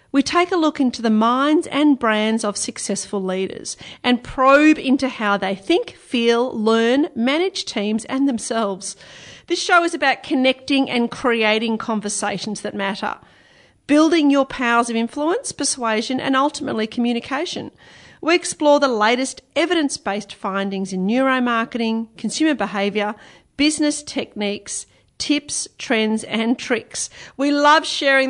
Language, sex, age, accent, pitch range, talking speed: English, female, 40-59, Australian, 220-295 Hz, 130 wpm